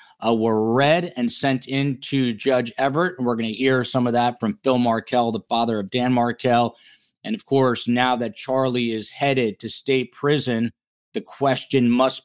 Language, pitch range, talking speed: English, 115-135 Hz, 190 wpm